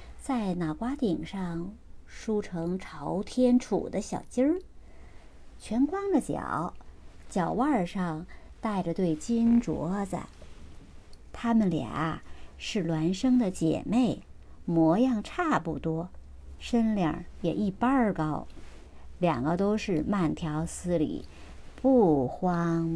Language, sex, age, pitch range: Chinese, male, 50-69, 155-245 Hz